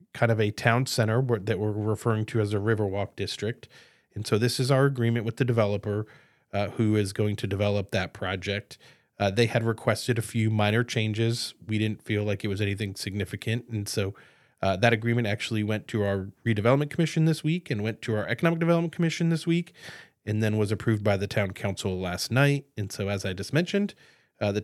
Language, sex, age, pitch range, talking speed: English, male, 30-49, 105-120 Hz, 210 wpm